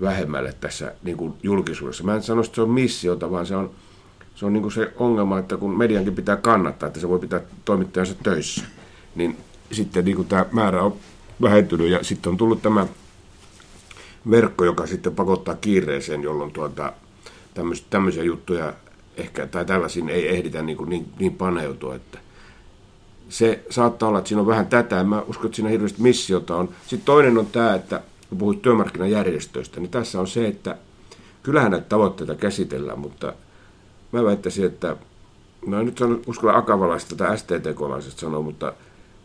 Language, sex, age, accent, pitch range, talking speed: Finnish, male, 60-79, native, 90-110 Hz, 165 wpm